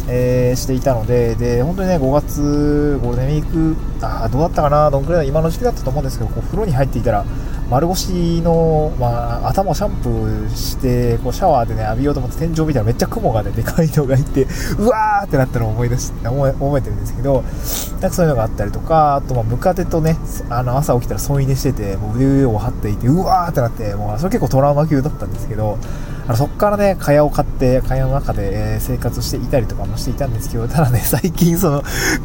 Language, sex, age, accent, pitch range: Japanese, male, 20-39, native, 115-145 Hz